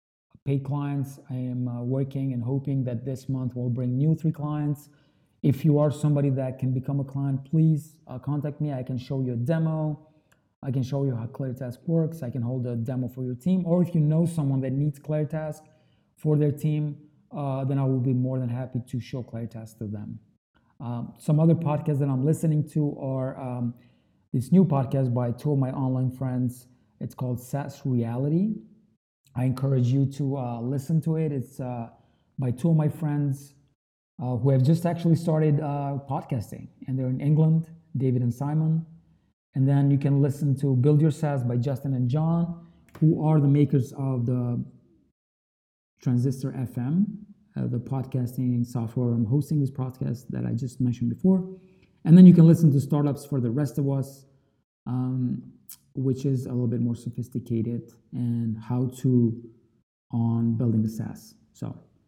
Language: English